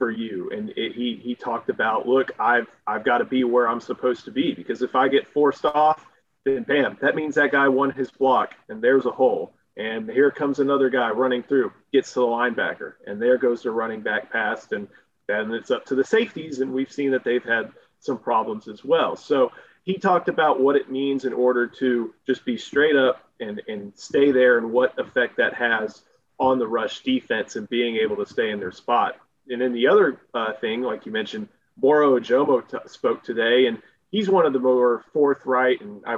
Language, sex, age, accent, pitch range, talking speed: English, male, 30-49, American, 125-185 Hz, 215 wpm